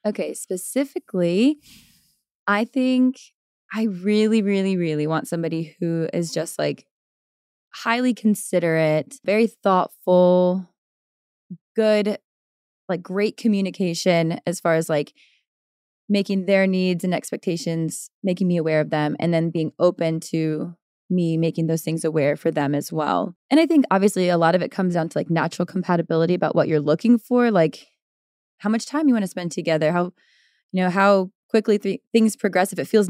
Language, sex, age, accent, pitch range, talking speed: English, female, 20-39, American, 165-205 Hz, 160 wpm